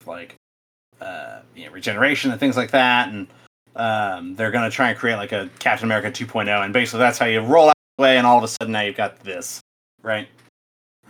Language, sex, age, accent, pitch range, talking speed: English, male, 30-49, American, 105-125 Hz, 225 wpm